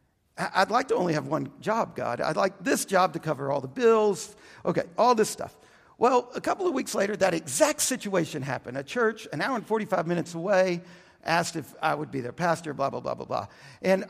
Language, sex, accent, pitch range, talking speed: English, male, American, 140-200 Hz, 220 wpm